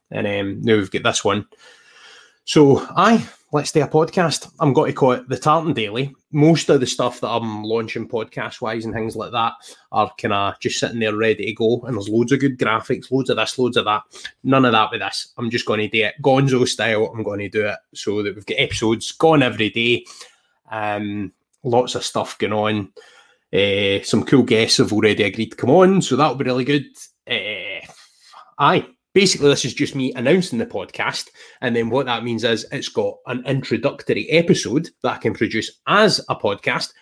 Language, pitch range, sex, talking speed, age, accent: English, 110-140 Hz, male, 210 wpm, 20-39, British